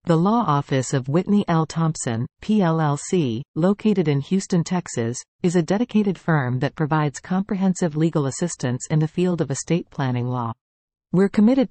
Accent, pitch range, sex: American, 140-185 Hz, female